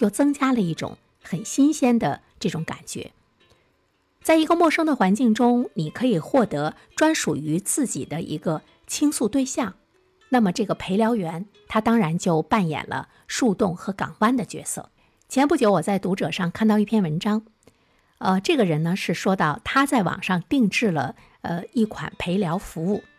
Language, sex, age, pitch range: Chinese, female, 50-69, 180-245 Hz